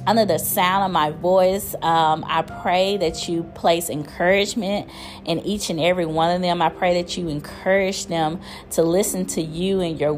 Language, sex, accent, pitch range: English, female, American, 160-185 Hz